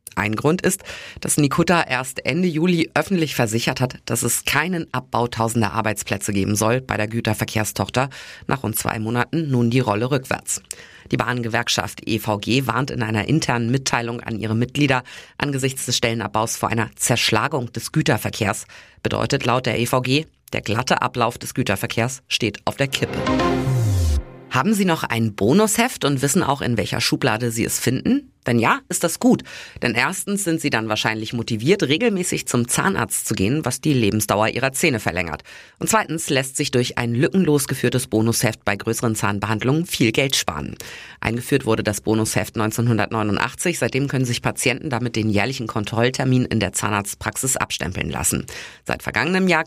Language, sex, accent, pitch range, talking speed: German, female, German, 110-145 Hz, 165 wpm